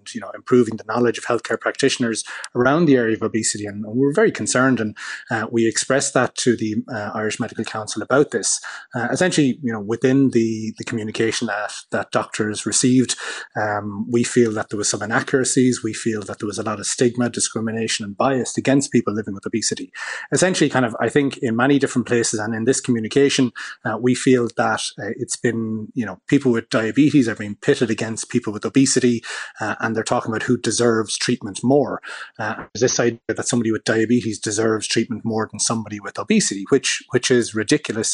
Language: English